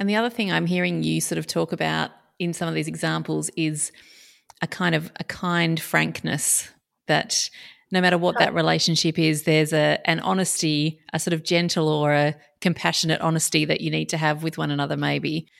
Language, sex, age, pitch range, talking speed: English, female, 30-49, 155-180 Hz, 195 wpm